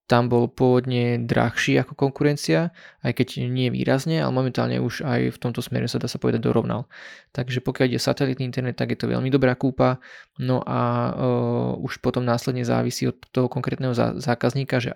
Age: 20-39